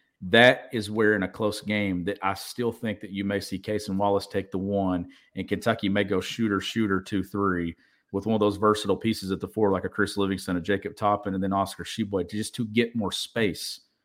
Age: 40-59